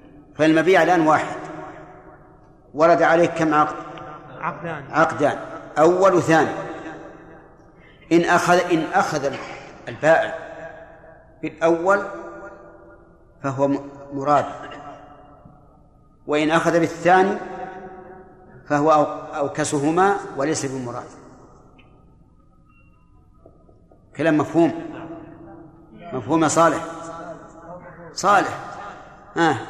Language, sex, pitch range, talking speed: Arabic, male, 145-175 Hz, 65 wpm